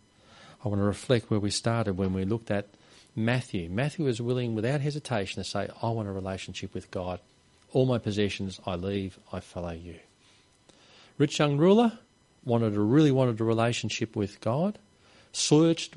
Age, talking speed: 40-59, 170 wpm